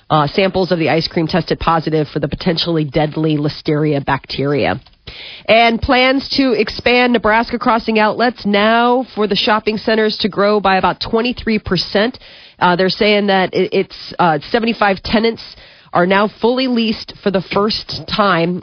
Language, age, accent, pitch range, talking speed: English, 40-59, American, 165-215 Hz, 150 wpm